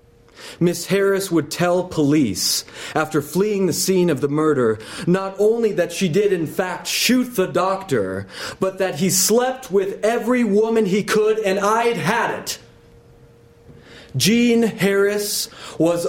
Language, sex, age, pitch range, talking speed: English, male, 30-49, 140-195 Hz, 140 wpm